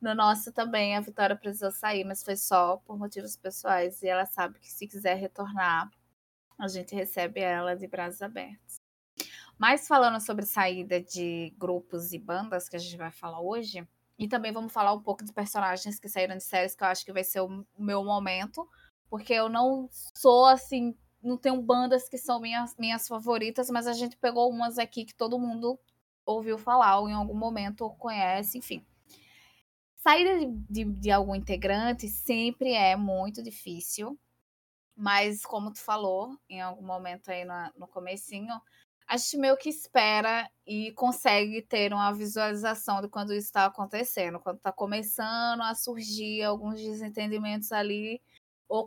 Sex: female